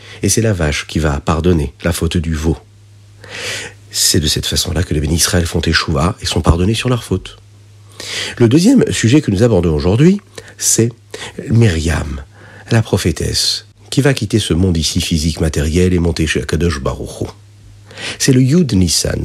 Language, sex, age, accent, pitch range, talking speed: French, male, 50-69, French, 90-115 Hz, 170 wpm